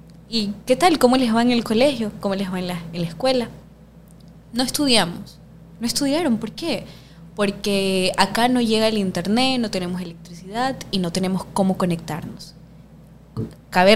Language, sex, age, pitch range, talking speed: Spanish, female, 20-39, 170-220 Hz, 165 wpm